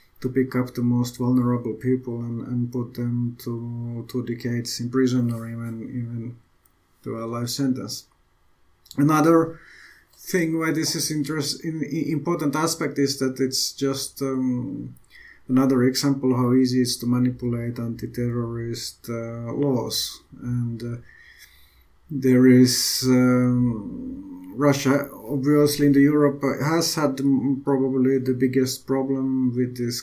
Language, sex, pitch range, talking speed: Finnish, male, 120-135 Hz, 130 wpm